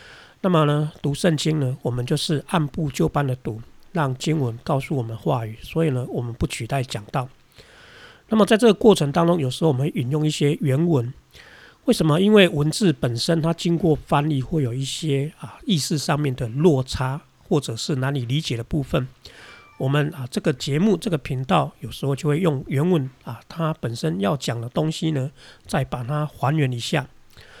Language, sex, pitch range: Chinese, male, 130-170 Hz